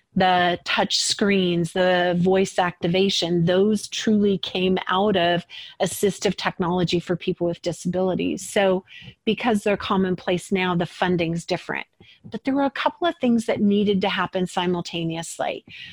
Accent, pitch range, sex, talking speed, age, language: American, 180-215 Hz, female, 140 wpm, 40-59, English